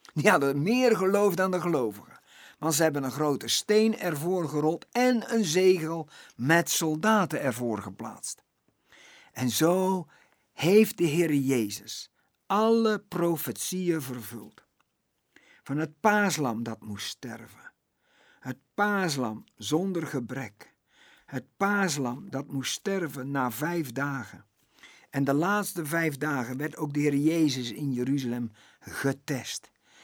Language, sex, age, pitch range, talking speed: Dutch, male, 50-69, 125-175 Hz, 125 wpm